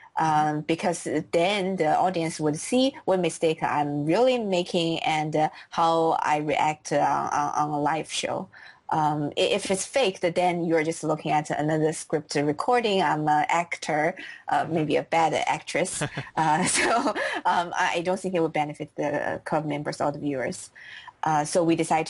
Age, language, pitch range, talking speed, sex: 20-39, English, 155-210 Hz, 170 wpm, female